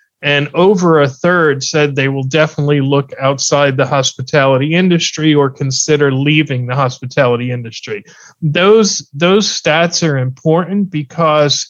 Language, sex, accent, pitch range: English, male, American, 135-165 Hz